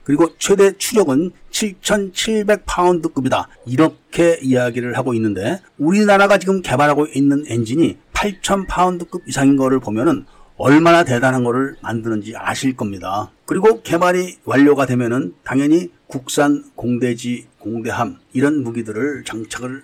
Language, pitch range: Korean, 130-180 Hz